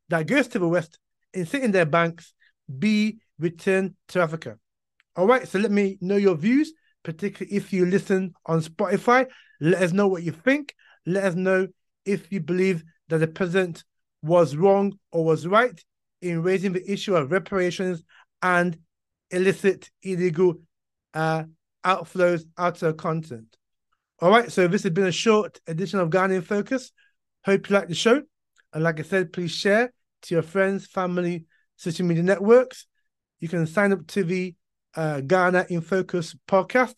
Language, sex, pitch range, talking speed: English, male, 165-195 Hz, 165 wpm